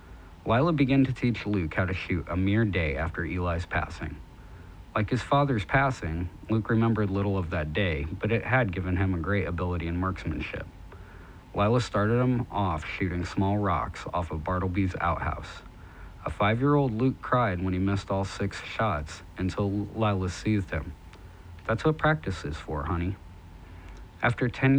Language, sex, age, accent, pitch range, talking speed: English, male, 50-69, American, 85-105 Hz, 160 wpm